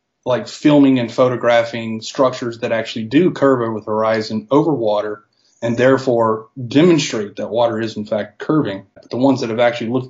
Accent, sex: American, male